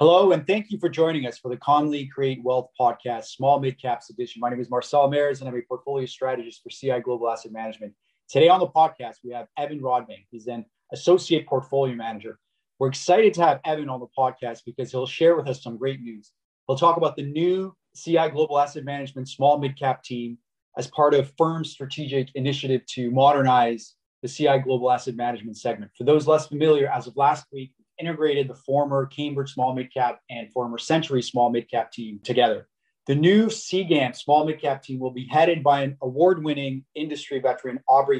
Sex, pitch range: male, 125-150 Hz